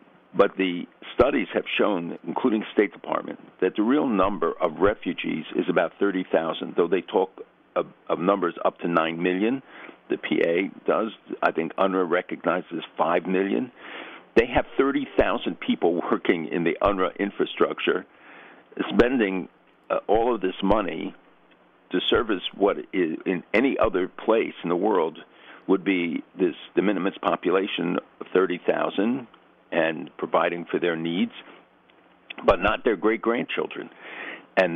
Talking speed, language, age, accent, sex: 135 wpm, English, 60-79, American, male